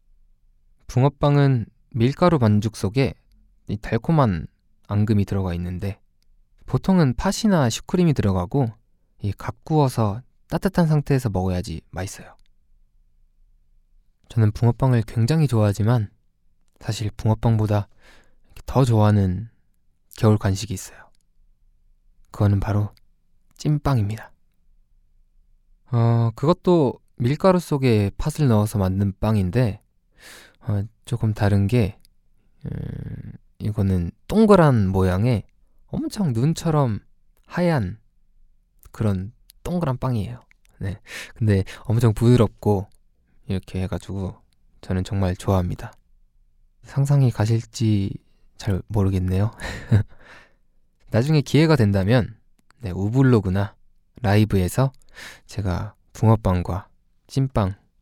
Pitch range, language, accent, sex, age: 95-125 Hz, Korean, native, male, 20-39